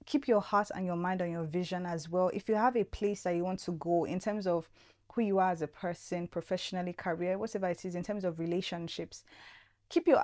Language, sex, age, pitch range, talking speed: English, female, 20-39, 170-205 Hz, 240 wpm